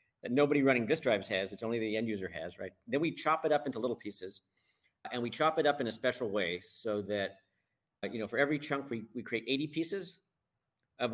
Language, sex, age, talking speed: English, male, 50-69, 225 wpm